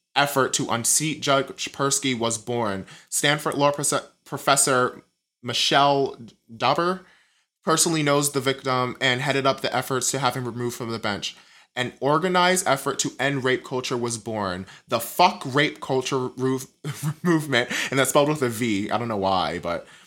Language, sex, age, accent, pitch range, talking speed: English, male, 20-39, American, 115-140 Hz, 165 wpm